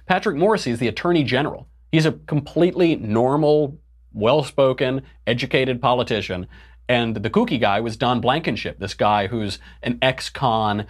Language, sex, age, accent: English, male, 30-49, American